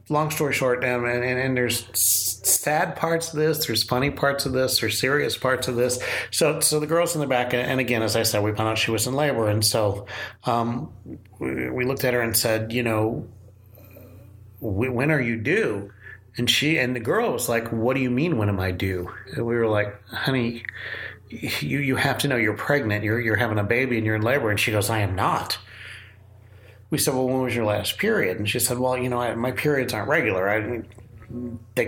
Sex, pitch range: male, 105-130 Hz